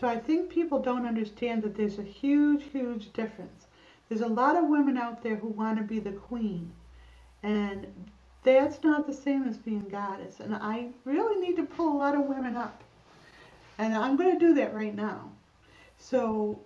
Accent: American